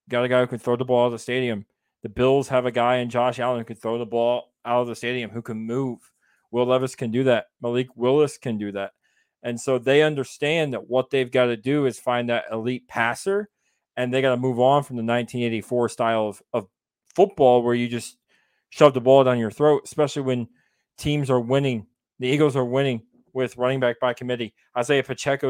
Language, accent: English, American